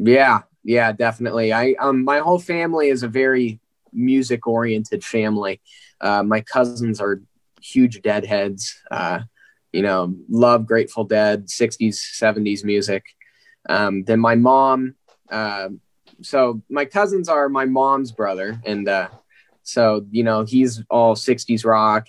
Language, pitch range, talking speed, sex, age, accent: English, 110-130 Hz, 135 wpm, male, 20-39, American